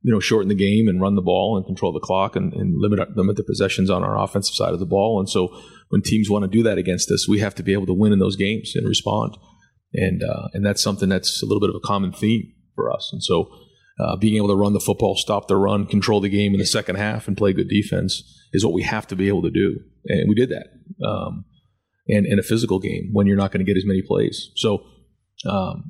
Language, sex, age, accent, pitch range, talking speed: English, male, 30-49, American, 100-105 Hz, 270 wpm